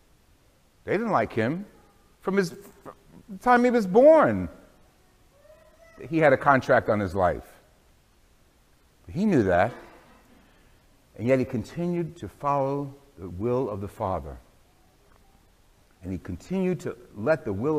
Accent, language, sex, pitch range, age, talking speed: American, English, male, 115-180 Hz, 60-79, 140 wpm